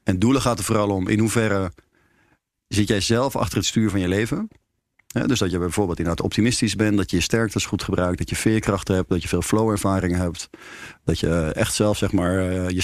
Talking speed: 210 wpm